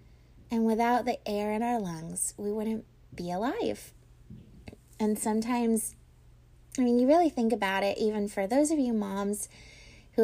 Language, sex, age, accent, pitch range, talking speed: English, female, 20-39, American, 200-240 Hz, 160 wpm